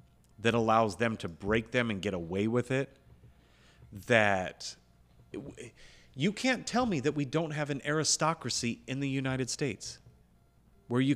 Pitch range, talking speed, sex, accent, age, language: 90-140 Hz, 150 wpm, male, American, 30-49, English